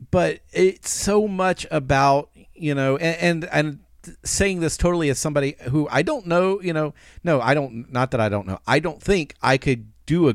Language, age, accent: English, 40-59, American